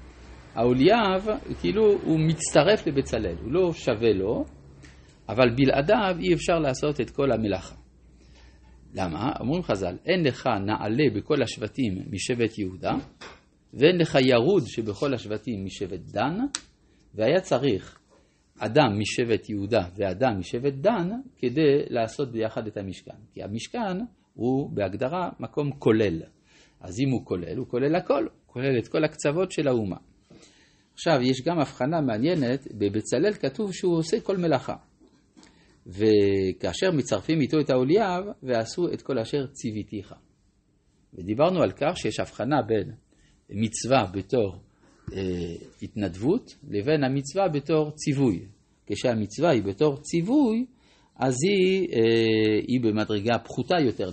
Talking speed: 125 wpm